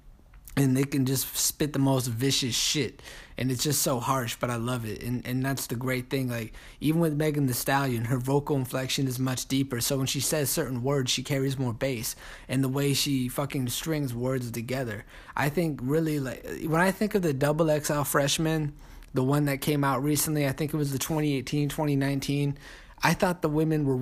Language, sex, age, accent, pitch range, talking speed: English, male, 20-39, American, 130-150 Hz, 210 wpm